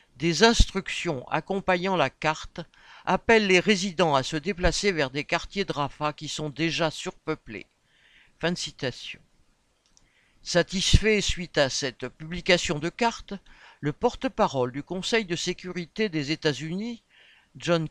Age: 60-79